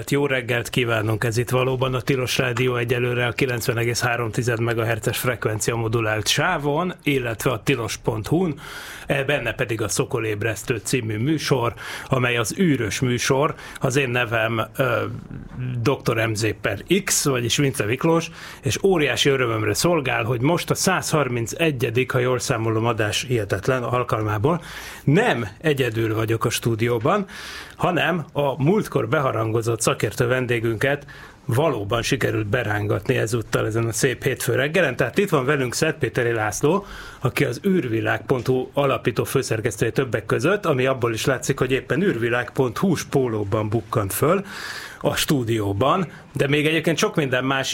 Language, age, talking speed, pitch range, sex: Hungarian, 30-49, 135 wpm, 115-145 Hz, male